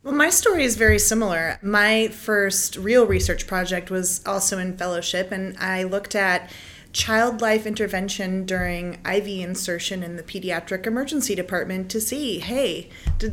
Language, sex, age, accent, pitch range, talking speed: English, female, 30-49, American, 185-230 Hz, 155 wpm